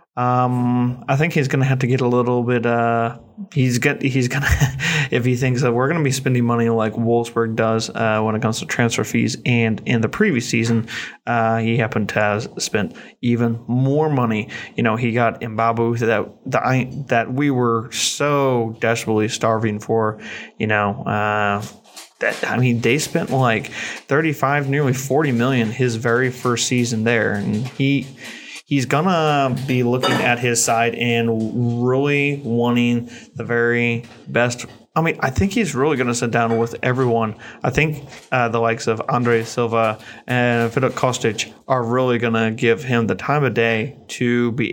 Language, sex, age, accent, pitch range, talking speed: English, male, 20-39, American, 115-130 Hz, 175 wpm